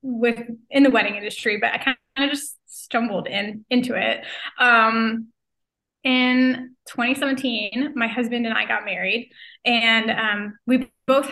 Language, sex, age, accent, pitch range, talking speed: English, female, 10-29, American, 225-250 Hz, 145 wpm